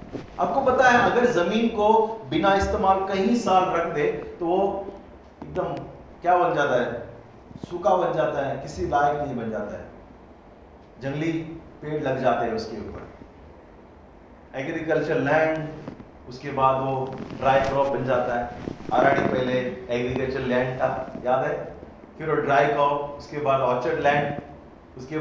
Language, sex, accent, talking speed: Hindi, male, native, 60 wpm